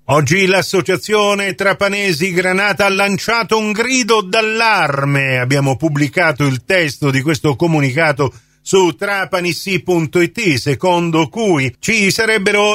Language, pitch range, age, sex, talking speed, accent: Italian, 140-200 Hz, 40-59, male, 105 wpm, native